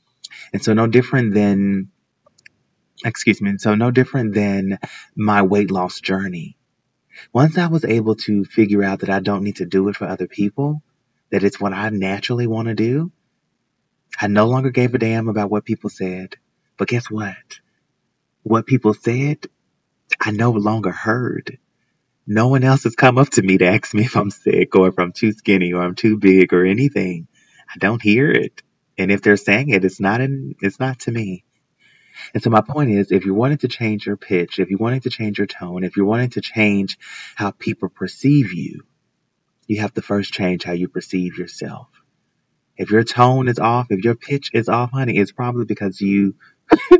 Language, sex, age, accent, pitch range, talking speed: English, male, 30-49, American, 100-125 Hz, 195 wpm